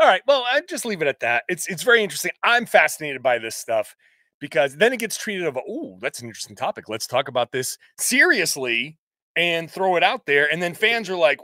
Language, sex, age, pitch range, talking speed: English, male, 30-49, 140-220 Hz, 230 wpm